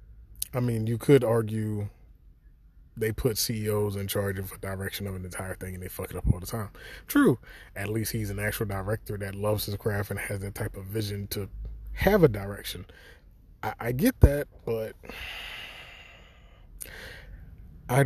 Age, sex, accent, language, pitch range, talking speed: 20-39, male, American, English, 95-115 Hz, 175 wpm